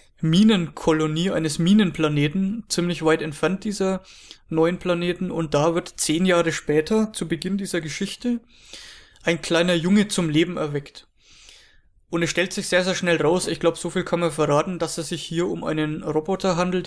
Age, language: 20-39, English